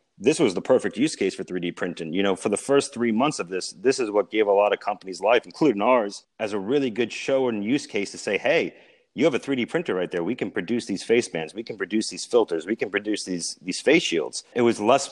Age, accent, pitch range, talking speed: 30-49, American, 95-125 Hz, 270 wpm